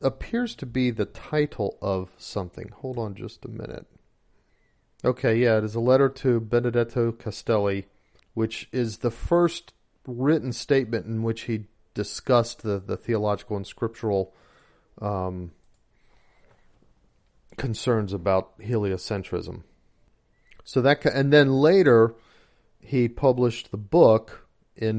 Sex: male